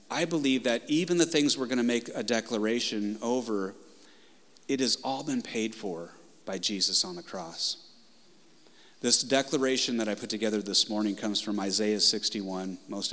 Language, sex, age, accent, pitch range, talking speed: English, male, 30-49, American, 105-130 Hz, 170 wpm